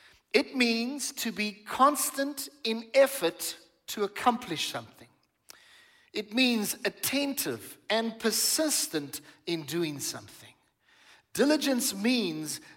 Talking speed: 95 wpm